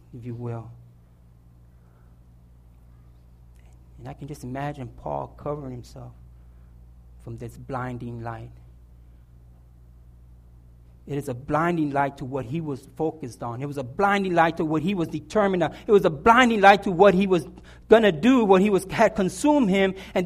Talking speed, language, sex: 165 wpm, English, male